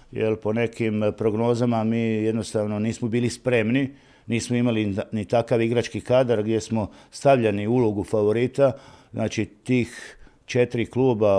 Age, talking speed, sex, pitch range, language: 50-69, 125 wpm, male, 105-120 Hz, Croatian